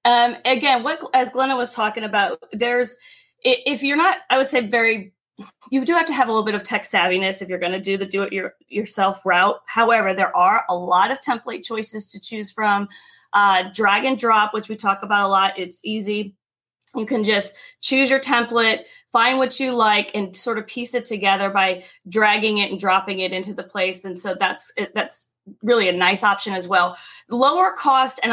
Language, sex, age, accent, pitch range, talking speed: English, female, 20-39, American, 195-240 Hz, 205 wpm